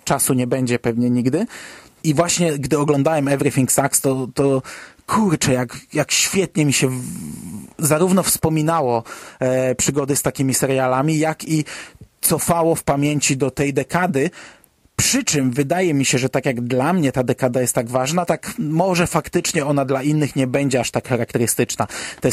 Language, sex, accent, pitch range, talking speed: Polish, male, native, 135-160 Hz, 165 wpm